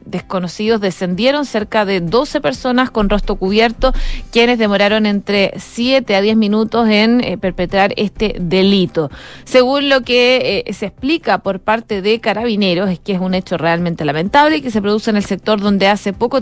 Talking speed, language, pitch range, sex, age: 175 wpm, Spanish, 190-235 Hz, female, 30-49